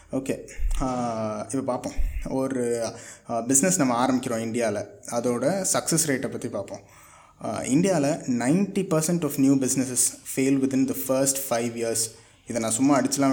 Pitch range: 120-140 Hz